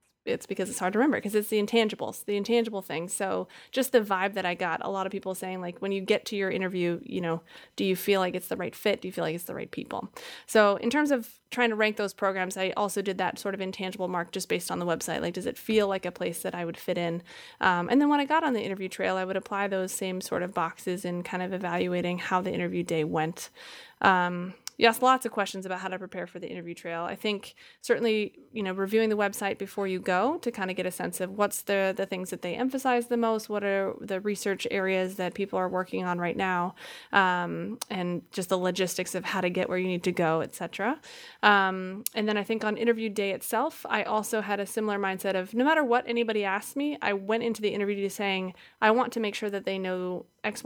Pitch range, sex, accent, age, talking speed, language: 185-215 Hz, female, American, 30-49, 255 wpm, English